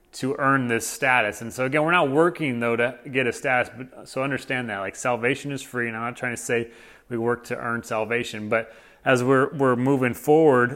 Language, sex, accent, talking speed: English, male, American, 225 wpm